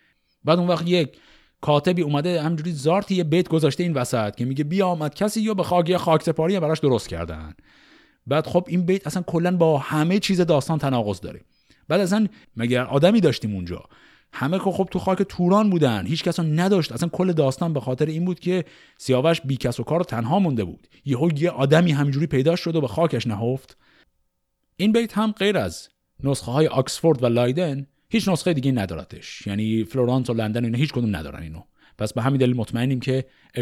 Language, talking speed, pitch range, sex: Persian, 195 wpm, 120-175 Hz, male